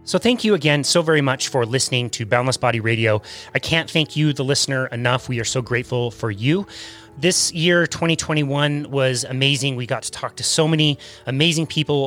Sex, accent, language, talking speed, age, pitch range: male, American, English, 200 wpm, 30-49, 125-170 Hz